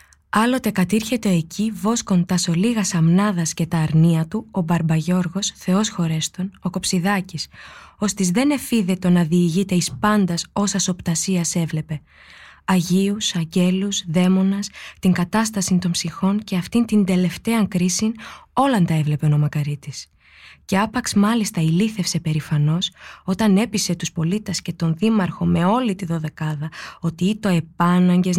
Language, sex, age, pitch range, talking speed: Greek, female, 20-39, 165-205 Hz, 130 wpm